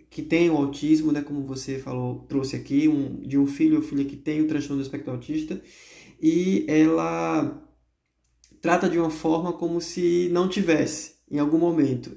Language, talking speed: Portuguese, 175 wpm